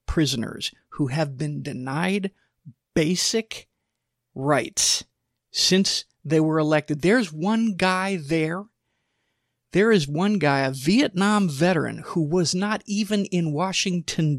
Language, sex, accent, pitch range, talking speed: English, male, American, 140-180 Hz, 115 wpm